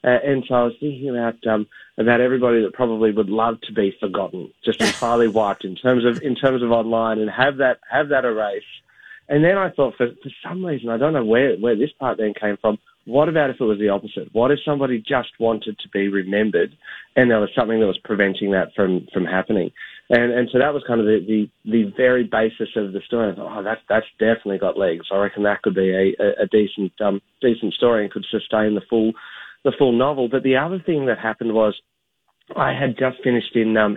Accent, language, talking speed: Australian, English, 240 wpm